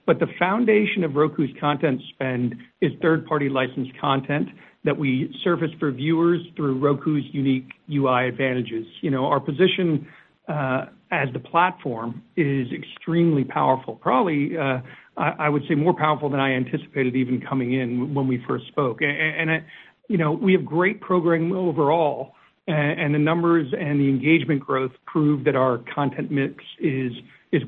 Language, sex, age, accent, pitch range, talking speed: English, male, 60-79, American, 135-160 Hz, 165 wpm